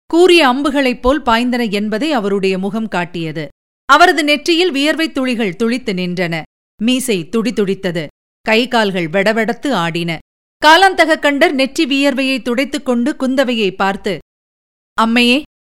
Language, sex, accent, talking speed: Tamil, female, native, 100 wpm